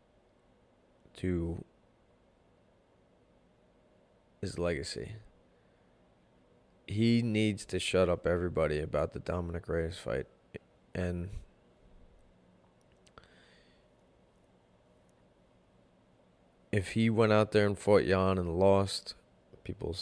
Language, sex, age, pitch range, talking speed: English, male, 20-39, 80-105 Hz, 80 wpm